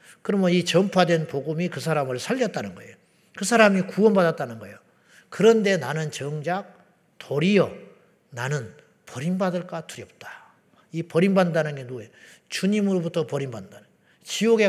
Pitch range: 150-190 Hz